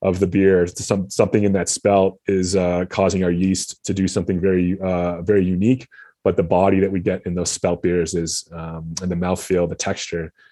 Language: English